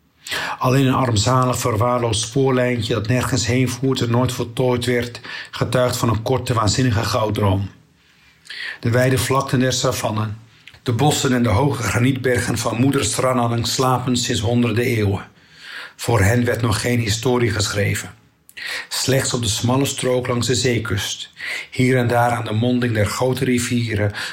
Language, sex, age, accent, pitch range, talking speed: Dutch, male, 50-69, Dutch, 115-130 Hz, 150 wpm